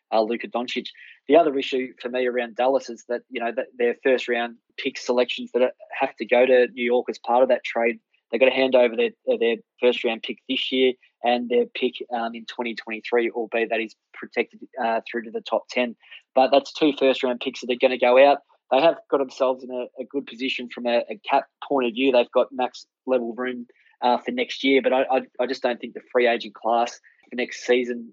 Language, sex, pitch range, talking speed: English, male, 120-130 Hz, 245 wpm